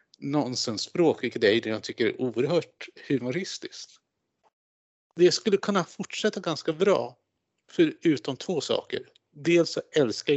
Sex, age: male, 60-79